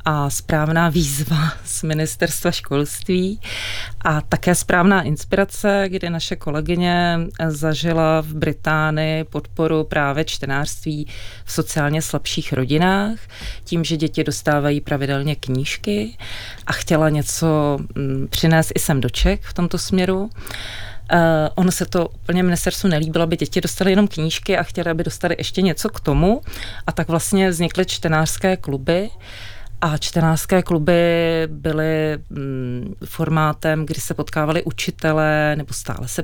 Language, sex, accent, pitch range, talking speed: Czech, female, native, 145-170 Hz, 125 wpm